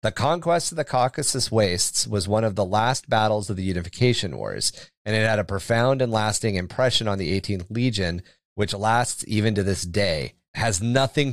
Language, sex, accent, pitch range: English, male, American, 100-125 Hz